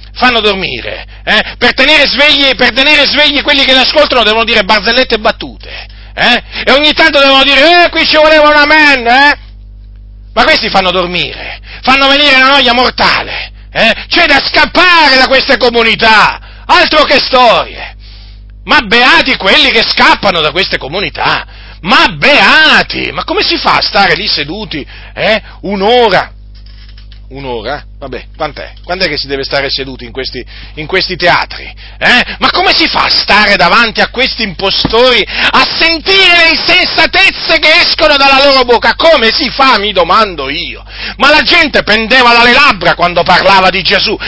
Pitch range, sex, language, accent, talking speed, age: 200-295 Hz, male, Italian, native, 160 wpm, 40-59